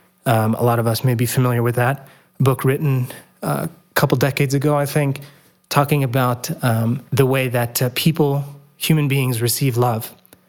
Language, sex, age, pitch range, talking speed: English, male, 30-49, 120-145 Hz, 185 wpm